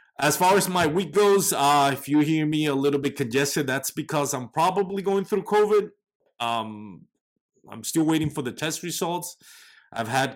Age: 30-49